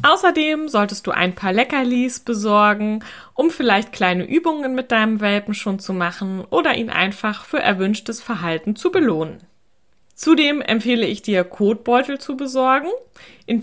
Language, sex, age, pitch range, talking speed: German, female, 20-39, 185-235 Hz, 145 wpm